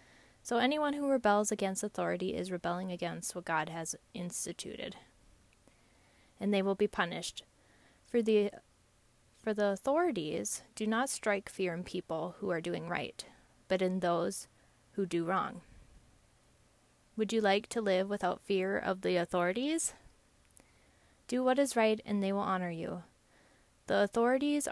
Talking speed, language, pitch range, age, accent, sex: 145 wpm, English, 180-230 Hz, 20-39, American, female